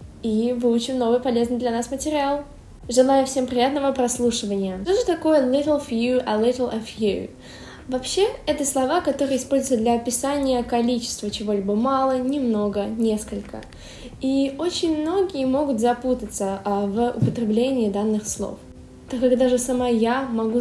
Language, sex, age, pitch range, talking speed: Russian, female, 10-29, 220-265 Hz, 135 wpm